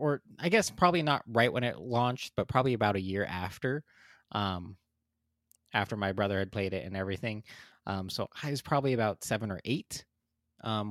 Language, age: English, 20-39